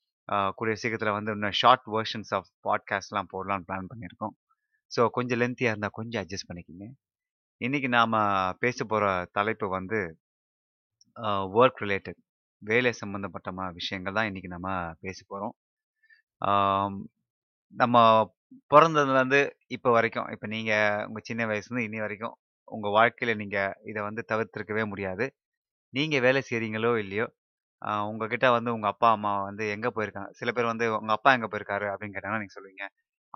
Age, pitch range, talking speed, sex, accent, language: 30-49, 100-120 Hz, 135 wpm, male, native, Tamil